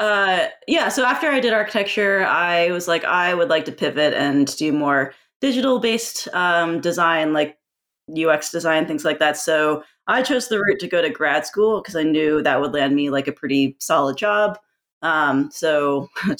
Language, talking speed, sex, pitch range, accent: English, 195 wpm, female, 150-200 Hz, American